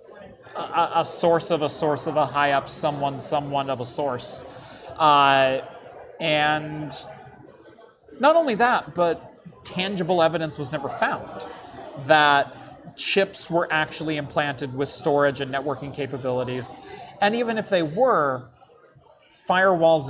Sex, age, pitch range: male, 30-49, 145-175 Hz